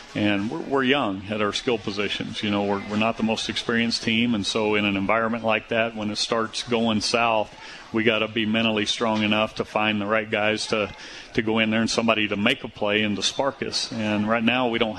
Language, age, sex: English, 40-59, male